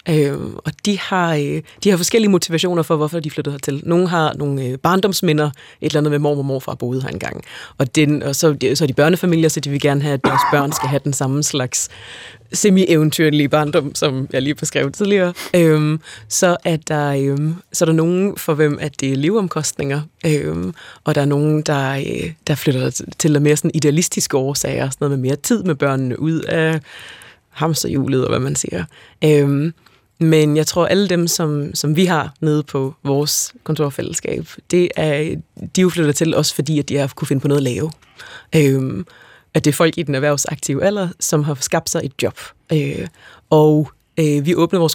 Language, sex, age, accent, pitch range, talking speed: Danish, female, 30-49, native, 140-165 Hz, 210 wpm